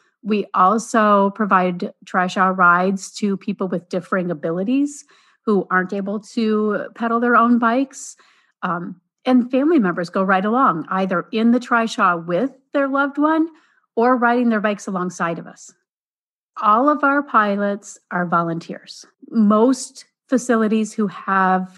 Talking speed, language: 140 wpm, English